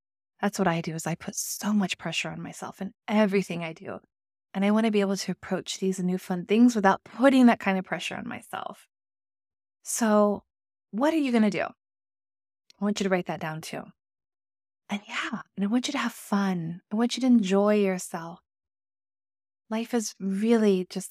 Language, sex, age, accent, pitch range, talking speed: English, female, 20-39, American, 160-210 Hz, 200 wpm